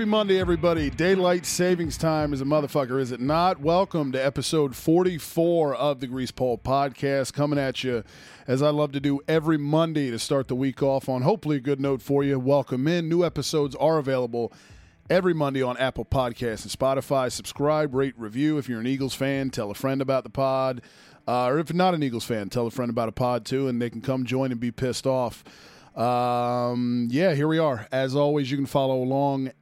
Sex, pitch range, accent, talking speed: male, 120-145 Hz, American, 210 wpm